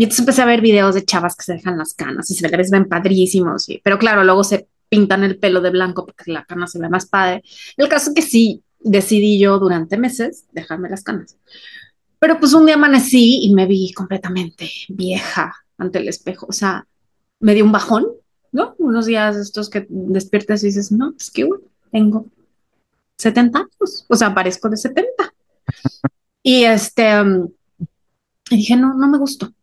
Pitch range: 195-260 Hz